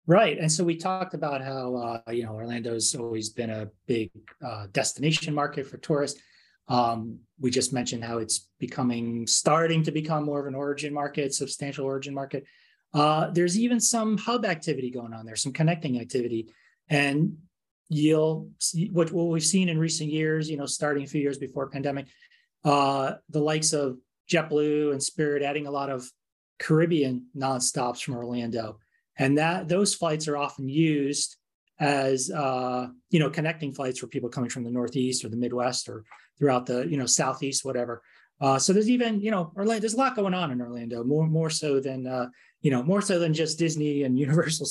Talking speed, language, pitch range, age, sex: 190 wpm, English, 125-165 Hz, 30-49, male